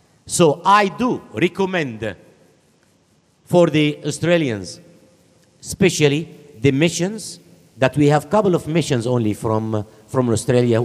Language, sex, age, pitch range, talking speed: English, male, 50-69, 115-170 Hz, 115 wpm